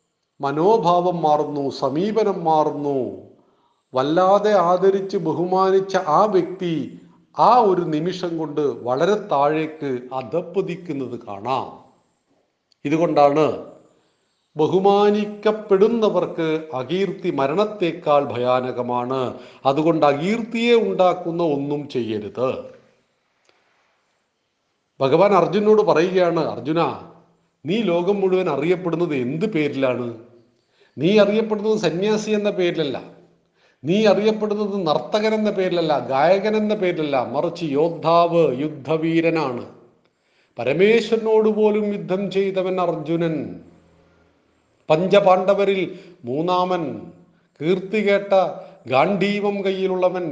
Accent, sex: native, male